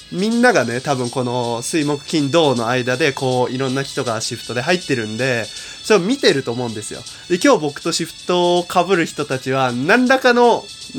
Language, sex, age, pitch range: Japanese, male, 20-39, 125-180 Hz